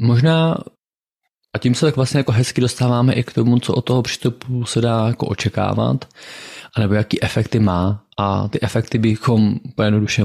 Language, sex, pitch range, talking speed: Slovak, male, 105-125 Hz, 170 wpm